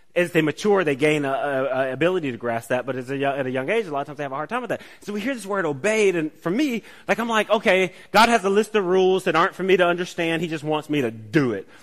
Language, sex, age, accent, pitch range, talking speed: English, male, 30-49, American, 140-200 Hz, 315 wpm